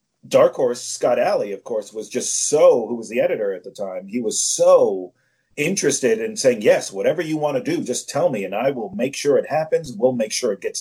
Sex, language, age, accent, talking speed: male, English, 40-59, American, 240 wpm